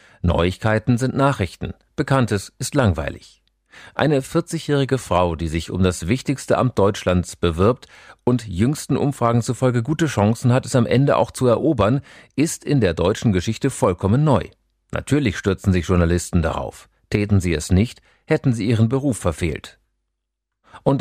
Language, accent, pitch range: German, German, 90-130 Hz